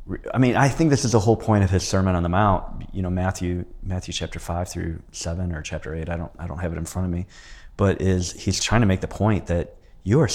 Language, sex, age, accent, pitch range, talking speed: English, male, 30-49, American, 90-115 Hz, 275 wpm